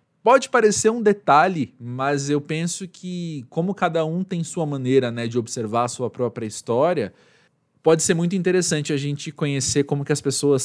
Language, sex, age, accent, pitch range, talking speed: Portuguese, male, 20-39, Brazilian, 125-175 Hz, 180 wpm